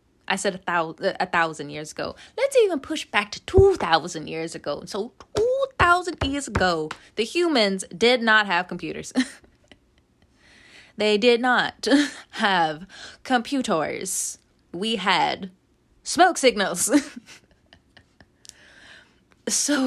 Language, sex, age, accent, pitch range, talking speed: English, female, 20-39, American, 165-220 Hz, 110 wpm